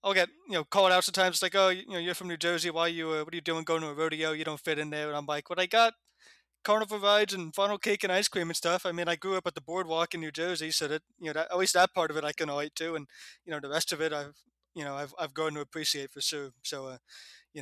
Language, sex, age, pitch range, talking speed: English, male, 20-39, 150-175 Hz, 325 wpm